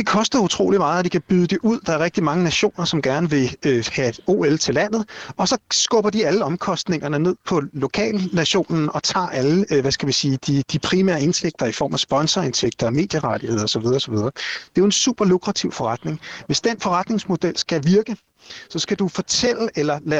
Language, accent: Danish, native